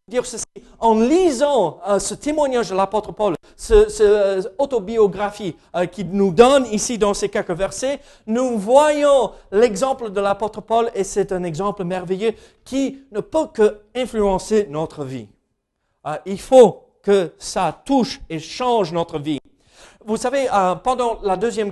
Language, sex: French, male